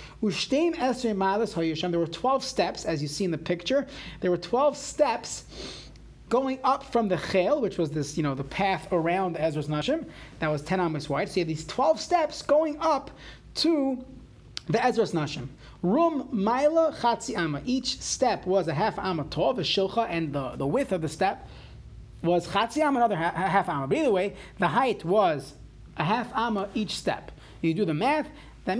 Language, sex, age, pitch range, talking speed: English, male, 30-49, 160-240 Hz, 175 wpm